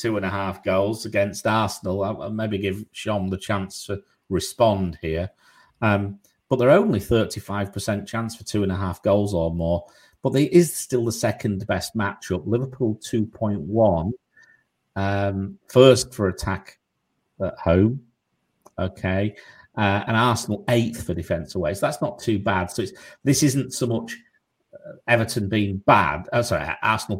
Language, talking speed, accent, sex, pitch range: English, 160 wpm, British, male, 95-110 Hz